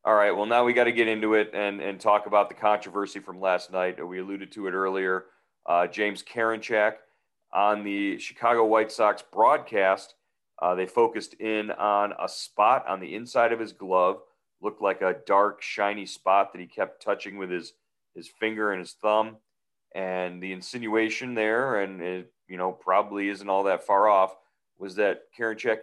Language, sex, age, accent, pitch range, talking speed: English, male, 40-59, American, 95-110 Hz, 185 wpm